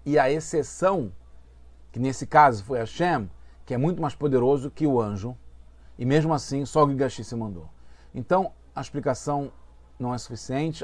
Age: 40-59